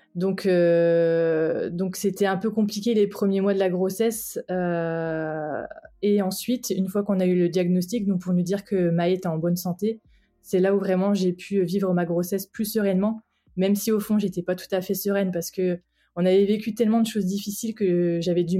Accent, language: French, French